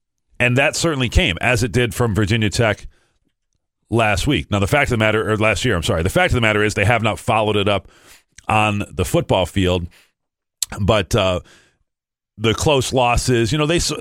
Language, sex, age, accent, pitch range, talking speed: English, male, 40-59, American, 95-110 Hz, 195 wpm